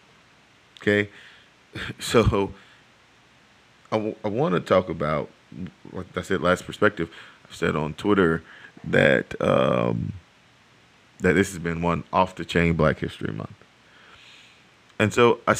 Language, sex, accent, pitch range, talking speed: English, male, American, 90-105 Hz, 110 wpm